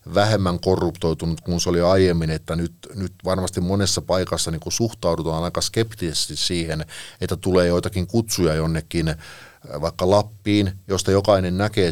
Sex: male